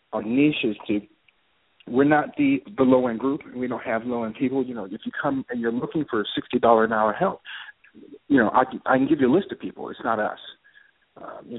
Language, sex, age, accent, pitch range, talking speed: English, male, 40-59, American, 115-180 Hz, 215 wpm